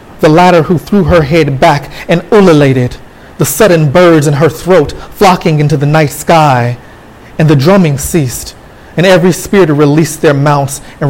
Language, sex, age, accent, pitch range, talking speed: English, male, 30-49, American, 140-165 Hz, 170 wpm